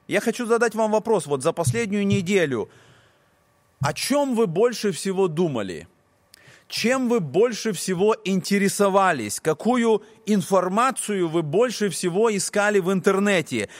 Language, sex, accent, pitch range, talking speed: Russian, male, native, 155-220 Hz, 120 wpm